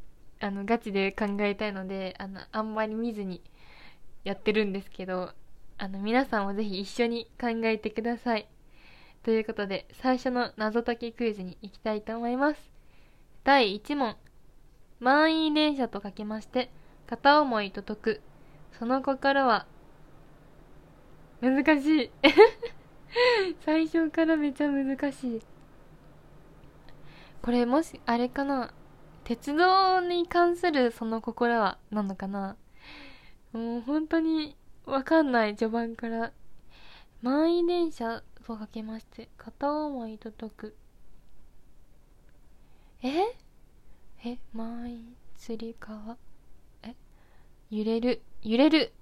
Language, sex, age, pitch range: Japanese, female, 20-39, 215-285 Hz